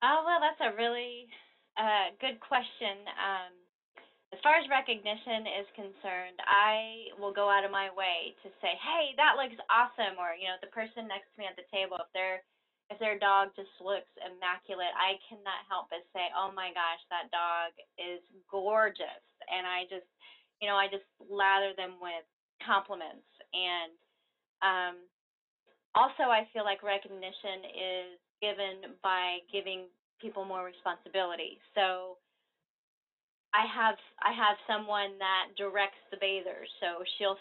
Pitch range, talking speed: 185-210 Hz, 150 wpm